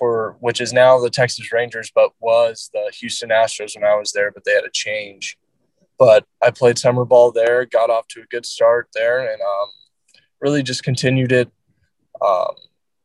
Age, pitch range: 20-39, 120-135 Hz